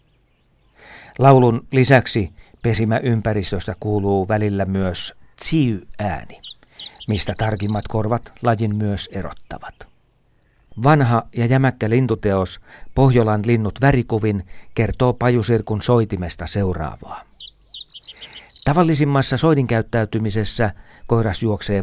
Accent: native